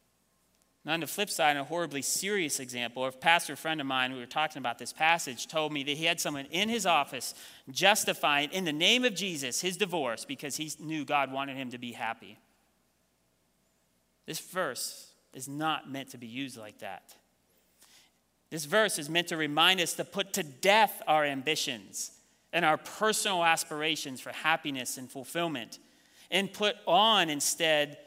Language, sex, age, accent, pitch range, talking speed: English, male, 30-49, American, 135-195 Hz, 170 wpm